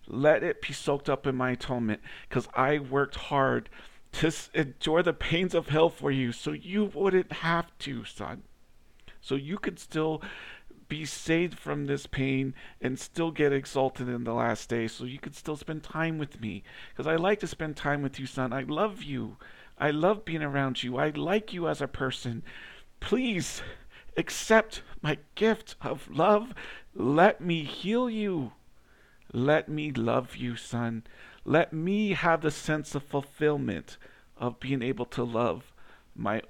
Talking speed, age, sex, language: 170 wpm, 50-69, male, English